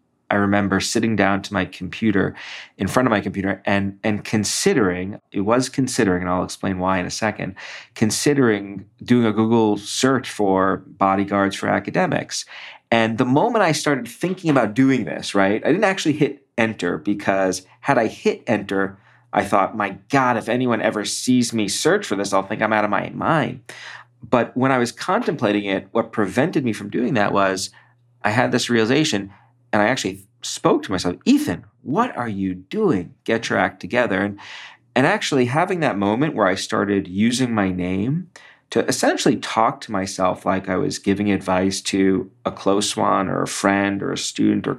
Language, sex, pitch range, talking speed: English, male, 95-125 Hz, 185 wpm